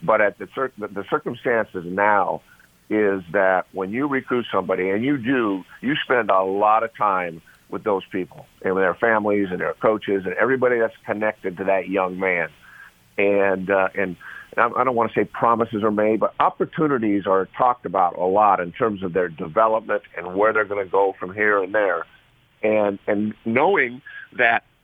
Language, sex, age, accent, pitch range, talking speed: English, male, 50-69, American, 105-135 Hz, 195 wpm